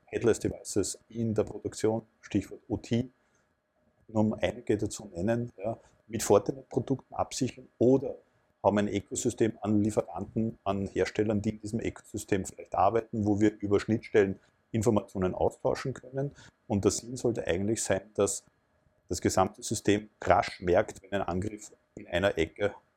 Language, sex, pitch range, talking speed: German, male, 100-120 Hz, 145 wpm